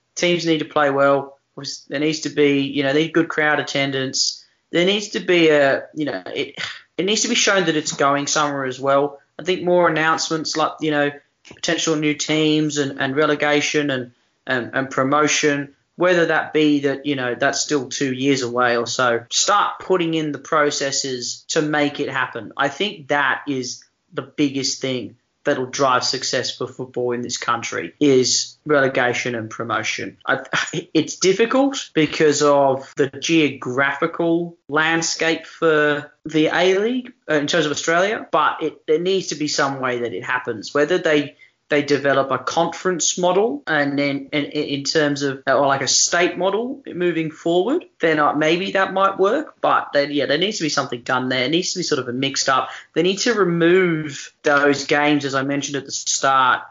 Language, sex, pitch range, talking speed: English, male, 135-160 Hz, 185 wpm